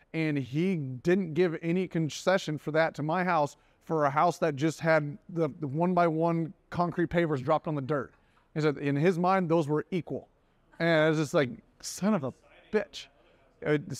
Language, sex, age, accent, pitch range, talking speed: English, male, 30-49, American, 150-180 Hz, 195 wpm